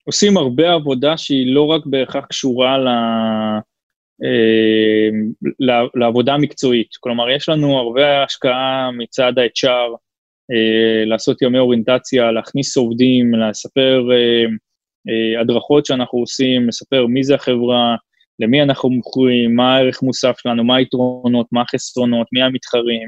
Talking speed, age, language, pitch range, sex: 115 wpm, 20-39, Hebrew, 120-140 Hz, male